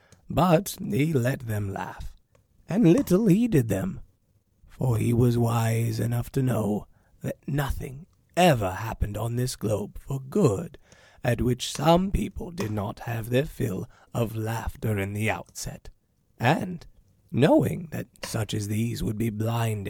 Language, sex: English, male